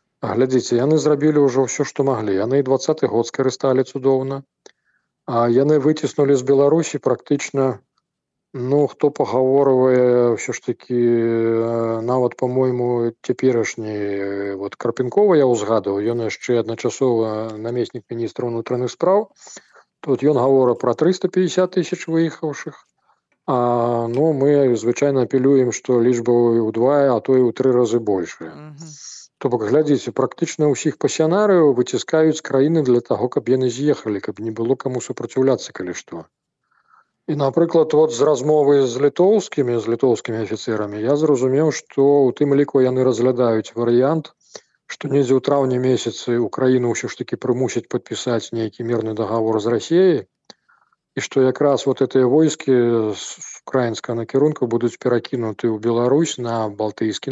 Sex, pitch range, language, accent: male, 120-145 Hz, Ukrainian, native